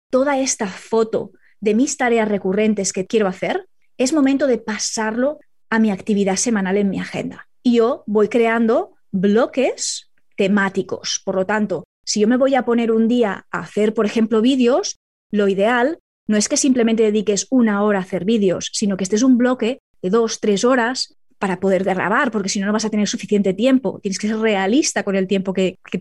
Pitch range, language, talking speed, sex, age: 205-255 Hz, Spanish, 195 wpm, female, 20-39